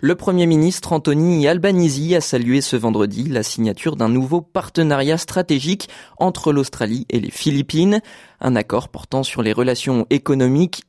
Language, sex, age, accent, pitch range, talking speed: French, male, 20-39, French, 100-140 Hz, 150 wpm